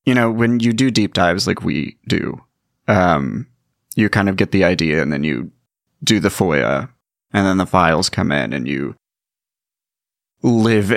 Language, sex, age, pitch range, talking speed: English, male, 30-49, 90-105 Hz, 175 wpm